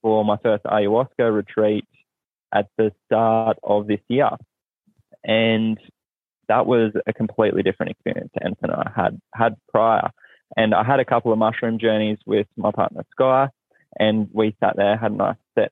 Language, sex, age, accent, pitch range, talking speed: English, male, 20-39, Australian, 105-130 Hz, 165 wpm